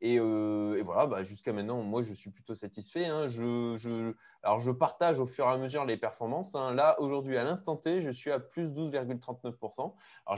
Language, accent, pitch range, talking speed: French, French, 115-155 Hz, 215 wpm